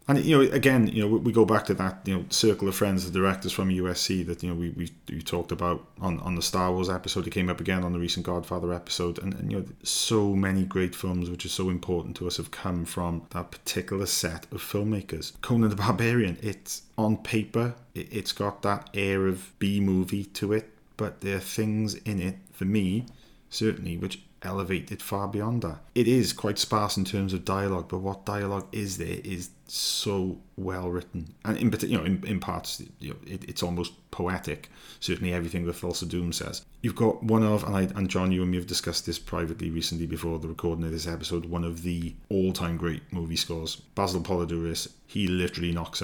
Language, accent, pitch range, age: English, British, 85-100 Hz, 30-49